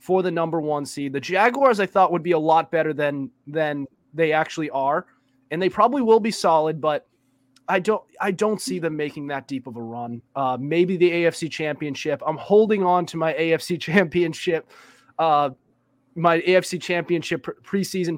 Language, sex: English, male